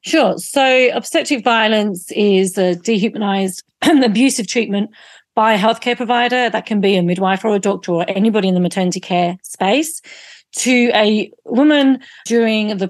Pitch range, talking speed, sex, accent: 180-220 Hz, 155 wpm, female, British